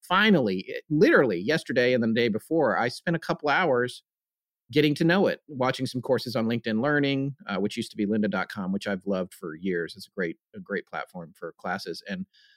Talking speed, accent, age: 205 wpm, American, 40-59